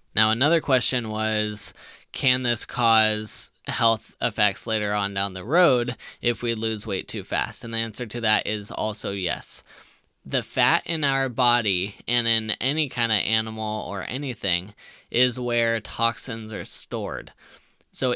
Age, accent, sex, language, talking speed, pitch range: 10-29, American, male, English, 155 wpm, 110-125 Hz